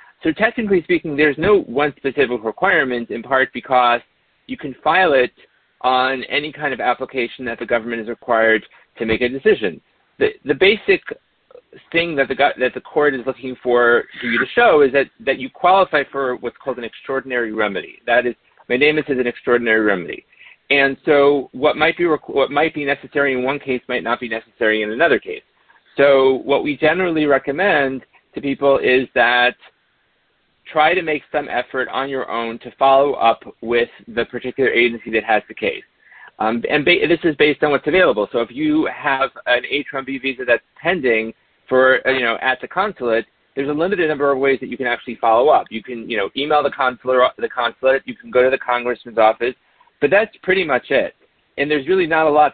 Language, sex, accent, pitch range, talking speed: English, male, American, 120-150 Hz, 200 wpm